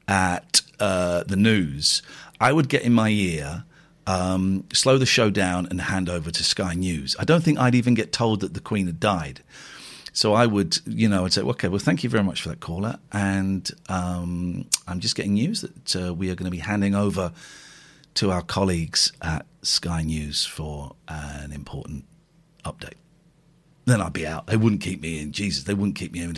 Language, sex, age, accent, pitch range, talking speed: English, male, 40-59, British, 90-150 Hz, 200 wpm